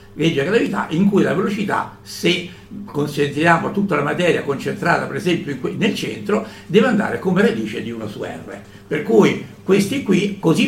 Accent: native